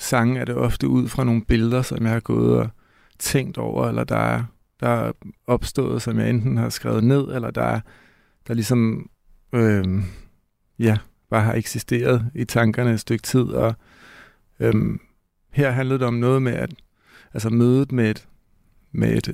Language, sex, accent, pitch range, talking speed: Danish, male, native, 105-125 Hz, 175 wpm